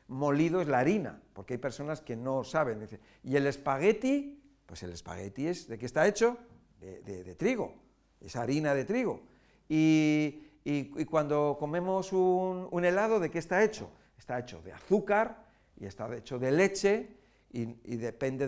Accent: Spanish